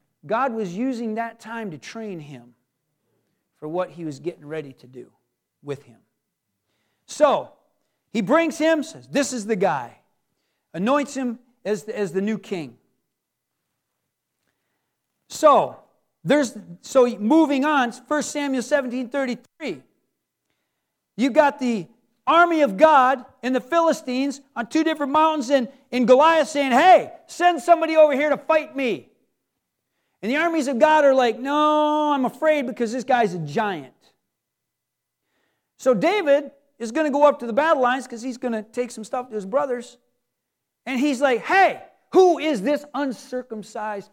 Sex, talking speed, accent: male, 150 wpm, American